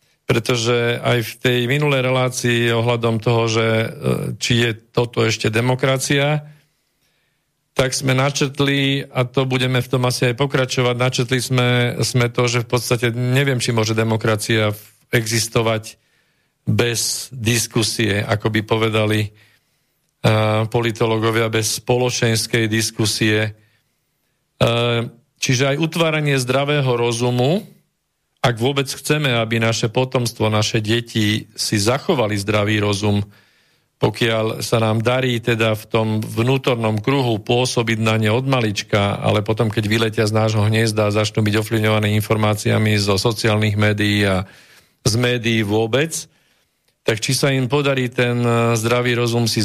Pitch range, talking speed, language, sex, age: 110-130 Hz, 130 wpm, Slovak, male, 40-59